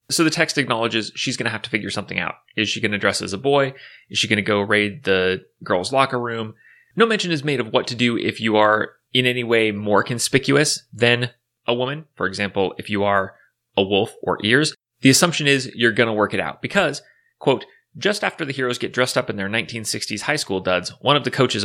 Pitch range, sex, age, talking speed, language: 105-140 Hz, male, 30-49, 240 wpm, English